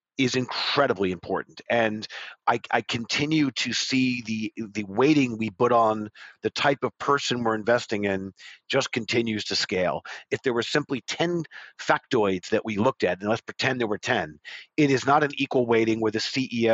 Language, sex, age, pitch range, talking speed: English, male, 50-69, 115-140 Hz, 185 wpm